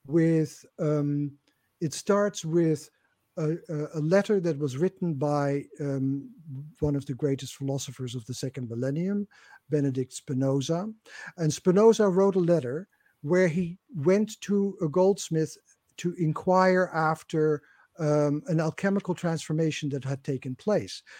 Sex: male